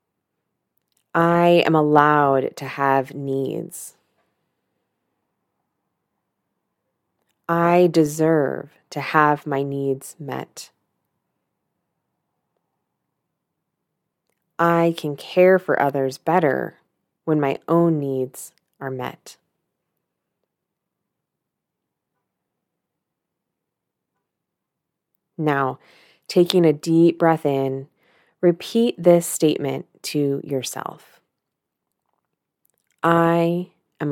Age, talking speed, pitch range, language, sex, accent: 20-39, 65 wpm, 140-170 Hz, English, female, American